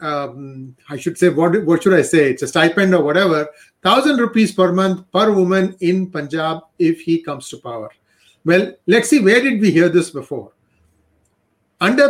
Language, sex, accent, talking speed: English, male, Indian, 185 wpm